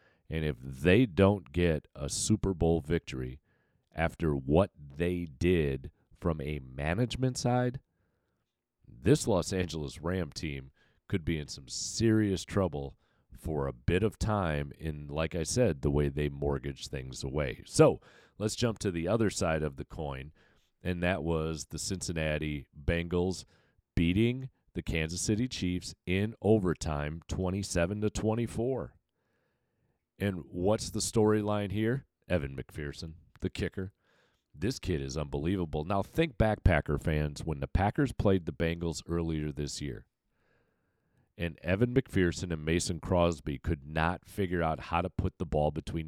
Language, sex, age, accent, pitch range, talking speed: English, male, 40-59, American, 80-105 Hz, 145 wpm